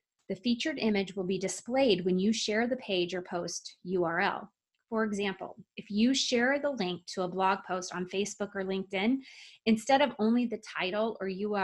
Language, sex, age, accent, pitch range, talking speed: English, female, 20-39, American, 185-225 Hz, 180 wpm